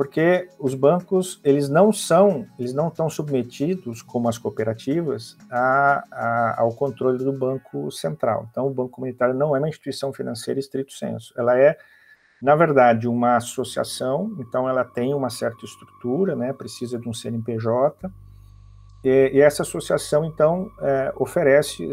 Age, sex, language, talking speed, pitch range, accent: 50-69, male, Portuguese, 150 wpm, 120-150 Hz, Brazilian